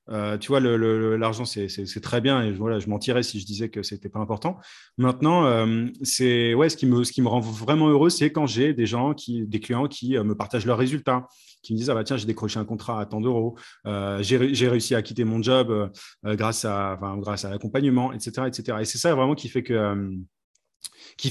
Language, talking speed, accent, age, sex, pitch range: French, 250 wpm, French, 30-49, male, 110-140 Hz